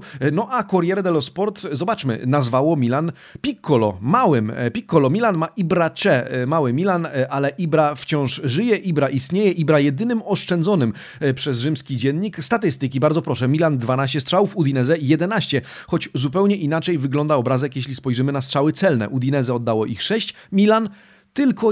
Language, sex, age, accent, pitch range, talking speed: Polish, male, 40-59, native, 135-170 Hz, 145 wpm